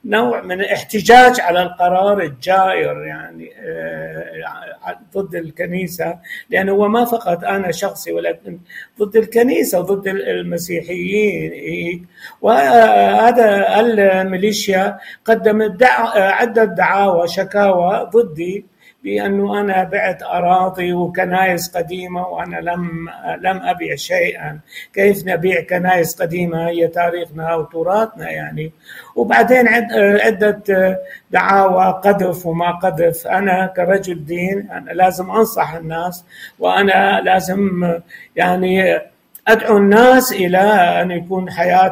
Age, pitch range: 50-69, 175-210 Hz